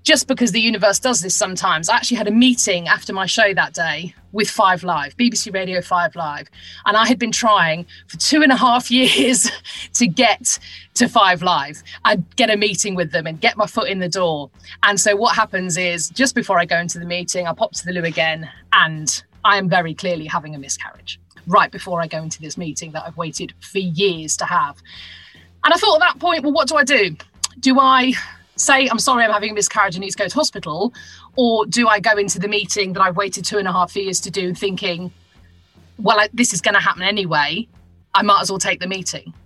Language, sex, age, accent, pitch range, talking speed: English, female, 30-49, British, 175-220 Hz, 230 wpm